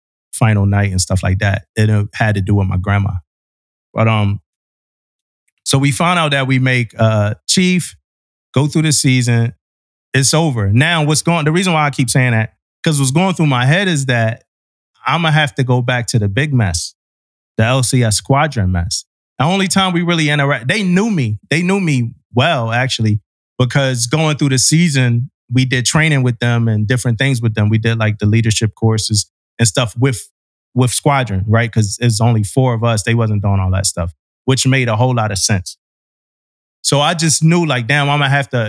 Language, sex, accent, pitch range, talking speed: English, male, American, 105-140 Hz, 205 wpm